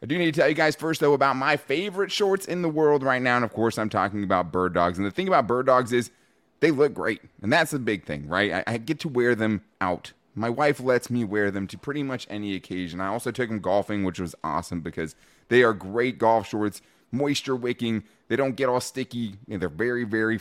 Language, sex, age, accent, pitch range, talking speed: English, male, 30-49, American, 95-130 Hz, 245 wpm